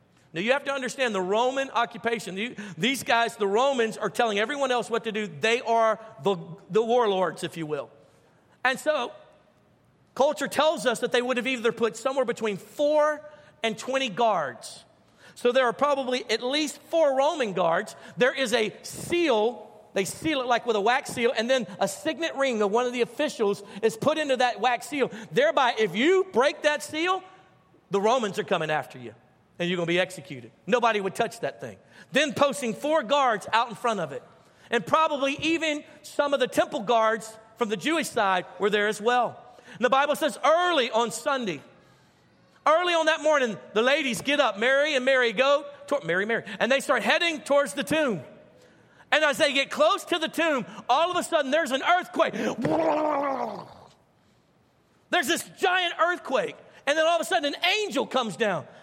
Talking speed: 190 wpm